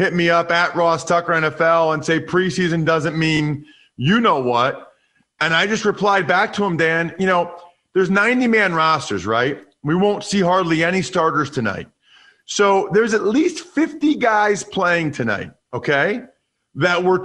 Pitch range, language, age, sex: 165-220 Hz, English, 40-59, male